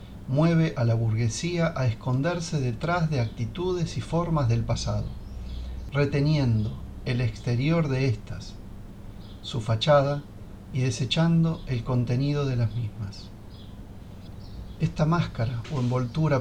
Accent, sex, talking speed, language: Argentinian, male, 115 wpm, Spanish